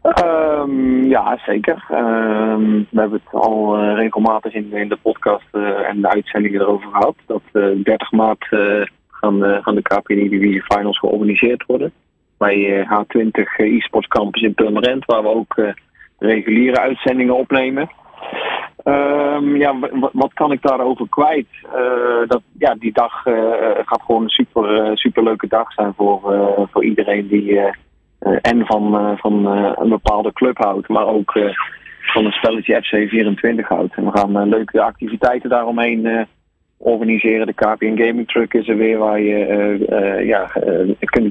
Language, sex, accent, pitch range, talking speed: Dutch, male, Dutch, 105-125 Hz, 170 wpm